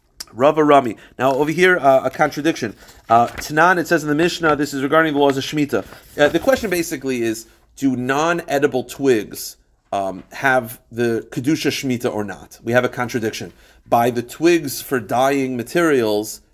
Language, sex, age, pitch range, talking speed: English, male, 40-59, 130-175 Hz, 175 wpm